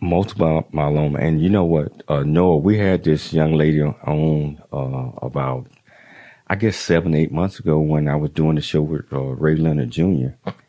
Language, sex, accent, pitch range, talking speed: English, male, American, 75-95 Hz, 185 wpm